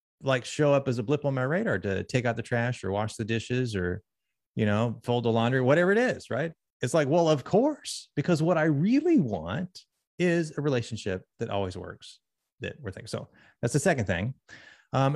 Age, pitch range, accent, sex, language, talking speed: 30-49, 100-135 Hz, American, male, English, 210 wpm